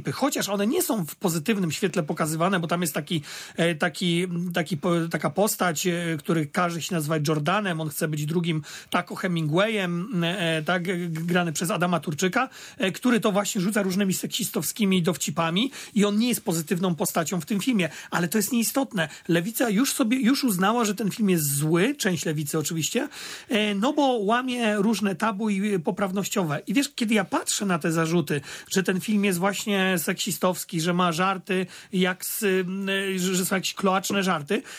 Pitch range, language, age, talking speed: 175-220 Hz, Polish, 40-59, 165 wpm